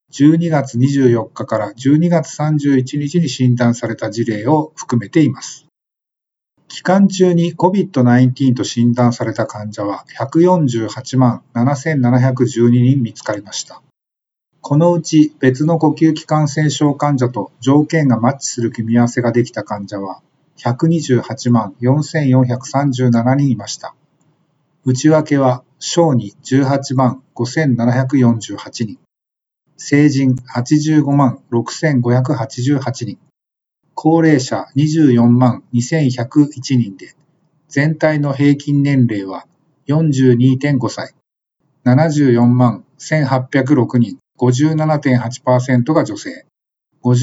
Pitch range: 120-150 Hz